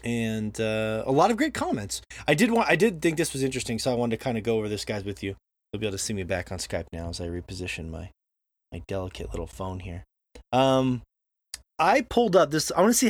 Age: 20-39